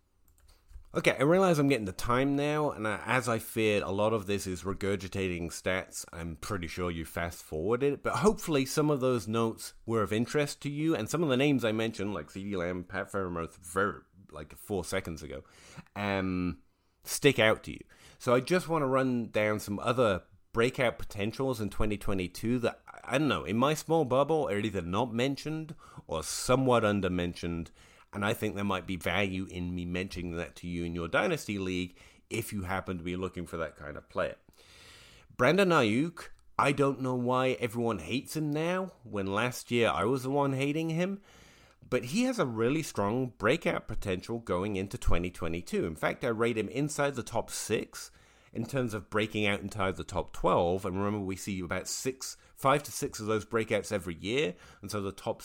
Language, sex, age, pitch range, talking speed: English, male, 30-49, 95-130 Hz, 195 wpm